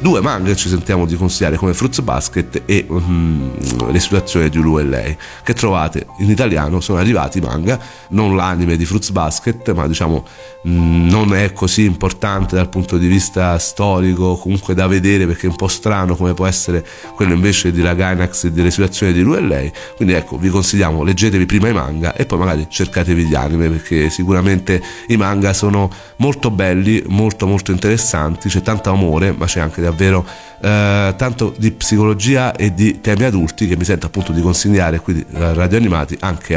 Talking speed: 190 wpm